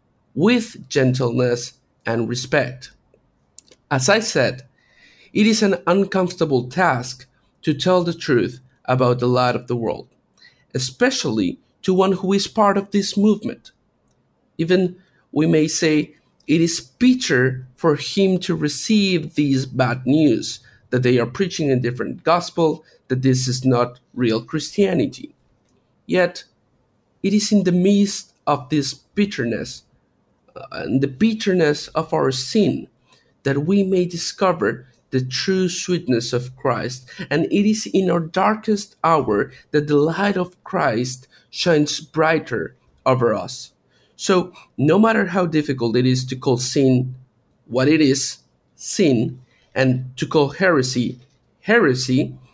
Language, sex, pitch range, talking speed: English, male, 130-185 Hz, 135 wpm